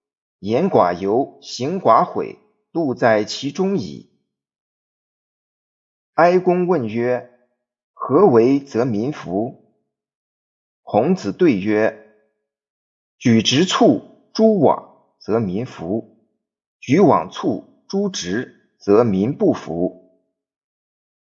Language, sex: Chinese, male